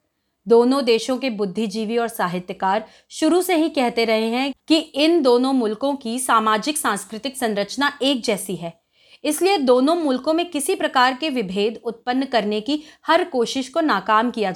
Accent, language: native, Hindi